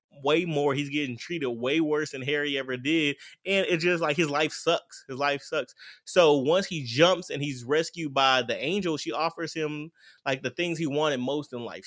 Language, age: English, 20-39